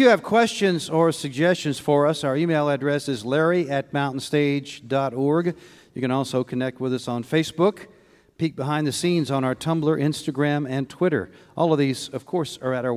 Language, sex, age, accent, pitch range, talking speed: English, male, 50-69, American, 130-160 Hz, 190 wpm